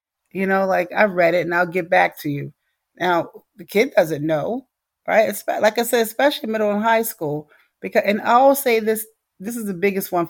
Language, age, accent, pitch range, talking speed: English, 40-59, American, 180-240 Hz, 215 wpm